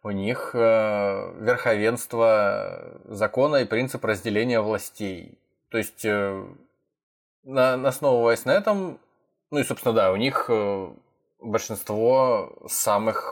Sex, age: male, 20-39